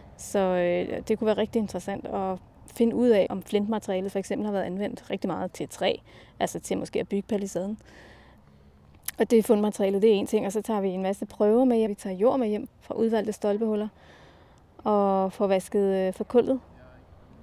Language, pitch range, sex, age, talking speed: Danish, 195-225 Hz, female, 20-39, 190 wpm